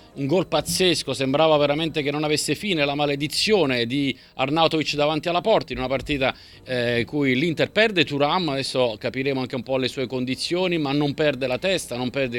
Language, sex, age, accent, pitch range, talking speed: Italian, male, 30-49, native, 125-150 Hz, 190 wpm